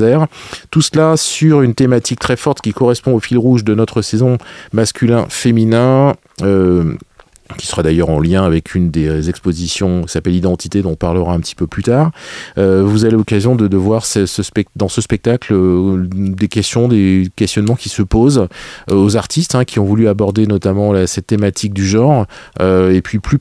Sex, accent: male, French